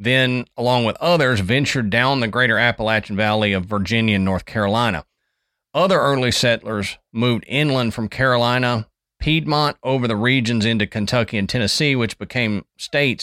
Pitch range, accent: 105-125 Hz, American